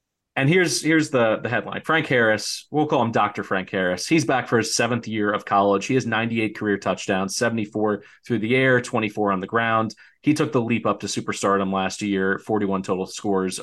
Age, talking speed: 30-49, 205 wpm